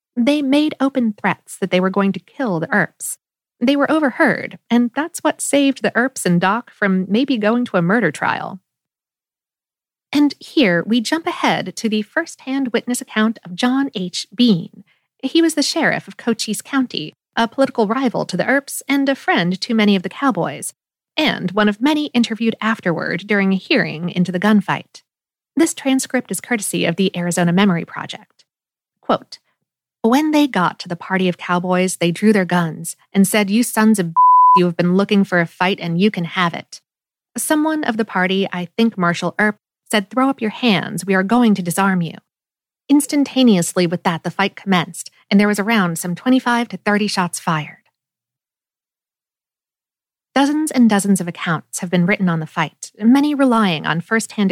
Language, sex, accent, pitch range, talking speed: English, female, American, 185-255 Hz, 185 wpm